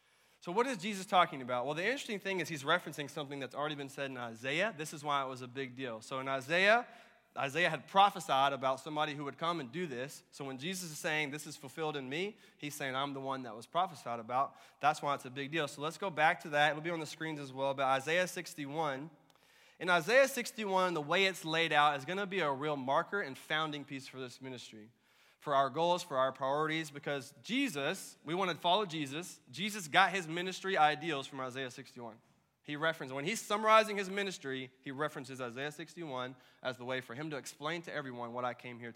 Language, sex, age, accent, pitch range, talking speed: English, male, 20-39, American, 135-180 Hz, 230 wpm